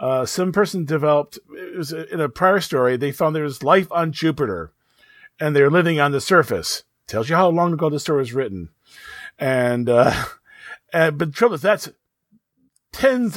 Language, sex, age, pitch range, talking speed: English, male, 40-59, 150-230 Hz, 185 wpm